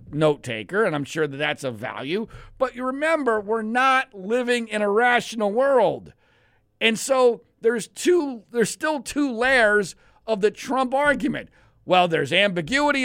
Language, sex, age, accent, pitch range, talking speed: English, male, 50-69, American, 150-230 Hz, 155 wpm